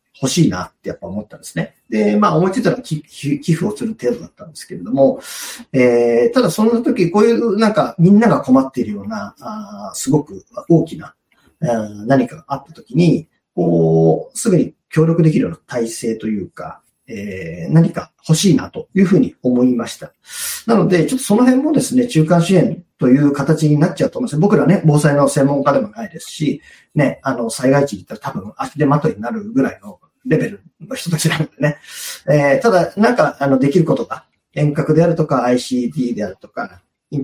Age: 40-59